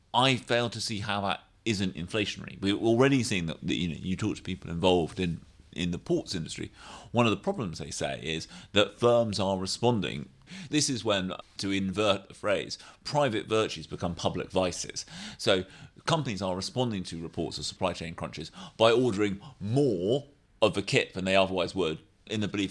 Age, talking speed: 30-49, 185 wpm